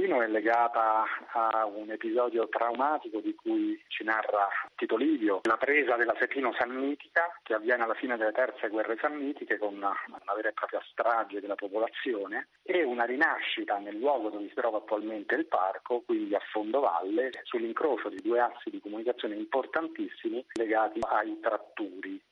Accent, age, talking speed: native, 40-59, 155 wpm